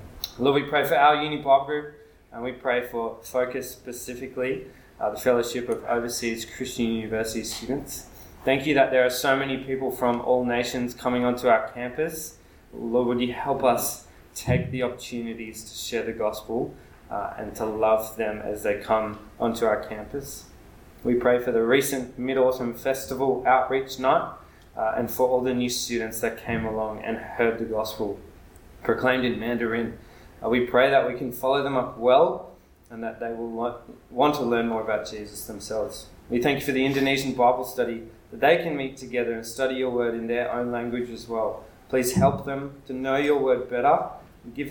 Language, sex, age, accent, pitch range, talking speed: English, male, 20-39, Australian, 115-130 Hz, 185 wpm